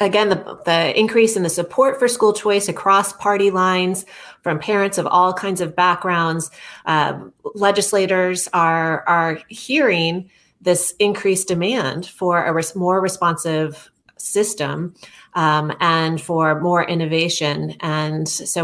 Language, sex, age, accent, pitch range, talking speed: English, female, 30-49, American, 160-195 Hz, 130 wpm